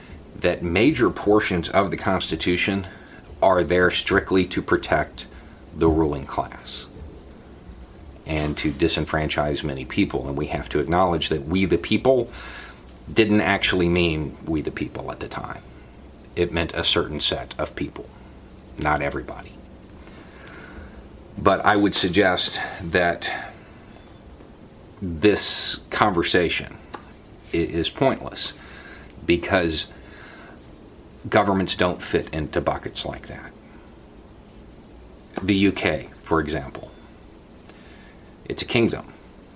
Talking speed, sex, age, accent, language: 105 wpm, male, 40-59, American, English